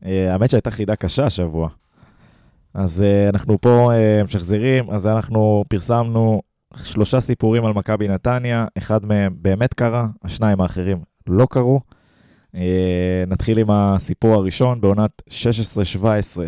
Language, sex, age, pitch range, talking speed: Hebrew, male, 20-39, 95-115 Hz, 115 wpm